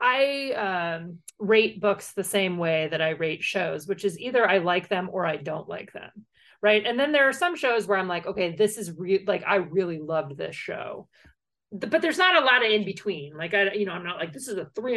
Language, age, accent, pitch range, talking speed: English, 30-49, American, 175-205 Hz, 240 wpm